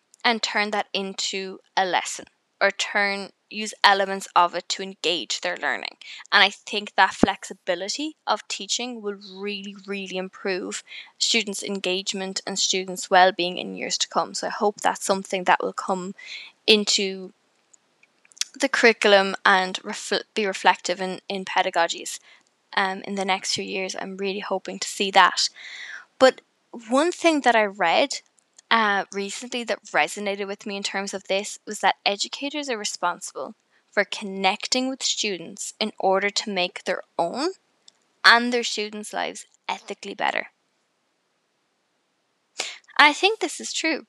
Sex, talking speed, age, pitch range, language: female, 145 wpm, 10-29, 190-235 Hz, English